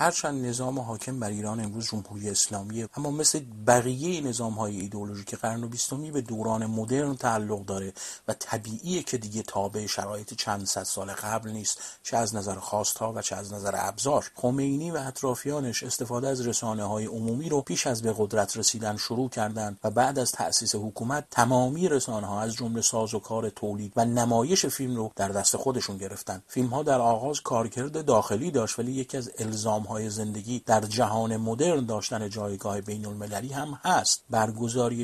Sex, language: male, Persian